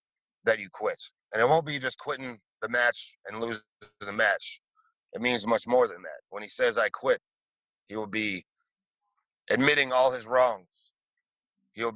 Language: Hebrew